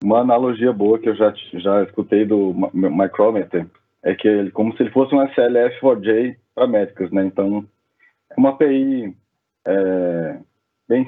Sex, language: male, Portuguese